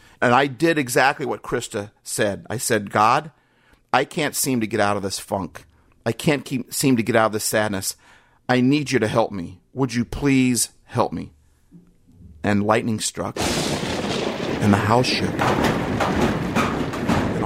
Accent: American